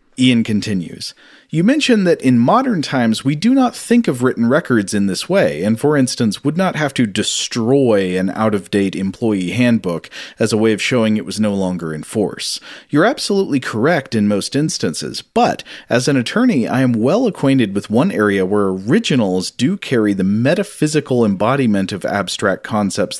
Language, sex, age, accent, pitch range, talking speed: English, male, 40-59, American, 105-155 Hz, 175 wpm